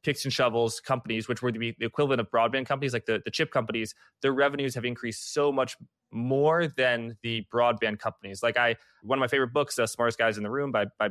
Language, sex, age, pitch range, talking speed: English, male, 20-39, 115-140 Hz, 230 wpm